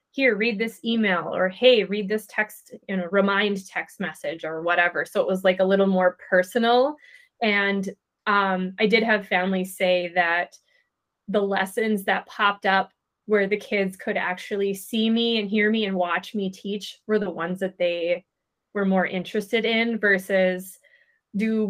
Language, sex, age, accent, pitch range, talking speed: English, female, 20-39, American, 185-215 Hz, 170 wpm